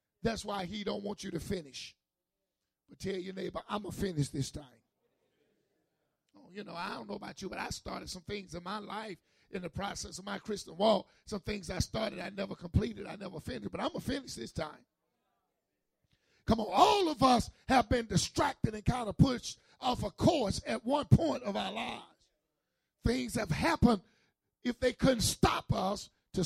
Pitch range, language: 175-235 Hz, English